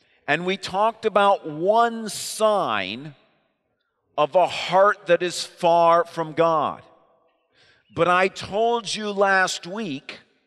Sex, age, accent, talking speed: male, 50-69, American, 115 wpm